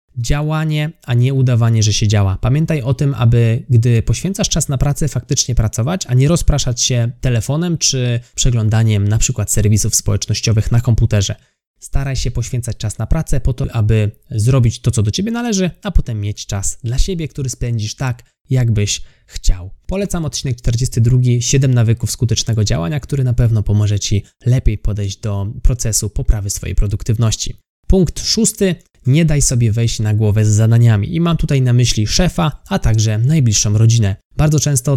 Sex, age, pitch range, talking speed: male, 20-39, 110-140 Hz, 170 wpm